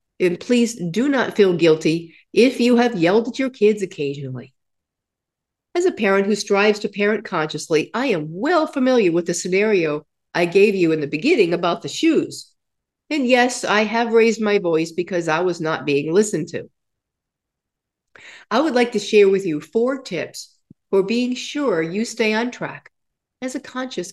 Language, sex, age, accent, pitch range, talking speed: English, female, 50-69, American, 170-235 Hz, 175 wpm